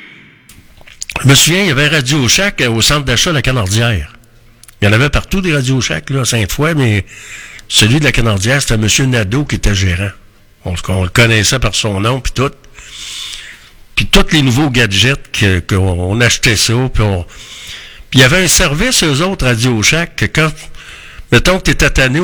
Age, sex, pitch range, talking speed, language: 60-79, male, 110-145 Hz, 190 wpm, French